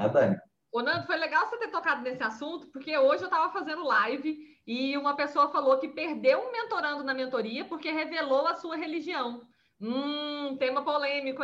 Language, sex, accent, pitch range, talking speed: Portuguese, female, Brazilian, 250-340 Hz, 175 wpm